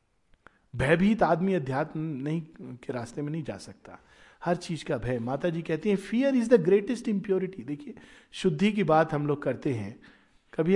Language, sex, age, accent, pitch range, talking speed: Hindi, male, 50-69, native, 155-220 Hz, 180 wpm